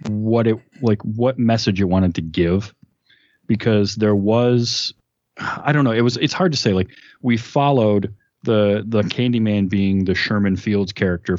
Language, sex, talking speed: English, male, 170 wpm